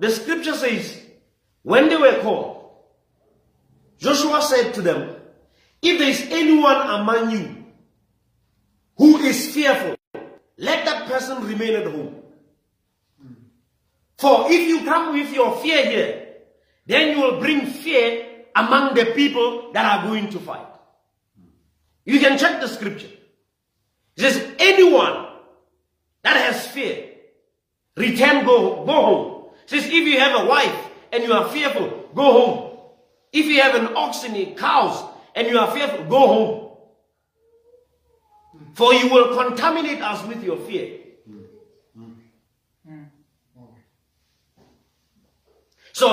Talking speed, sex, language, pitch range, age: 125 wpm, male, English, 205-315 Hz, 40-59